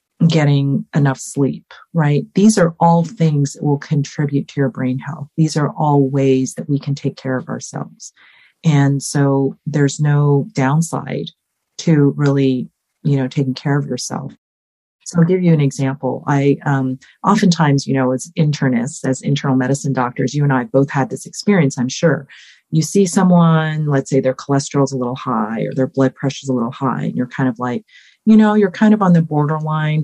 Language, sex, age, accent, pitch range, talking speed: English, female, 40-59, American, 135-160 Hz, 195 wpm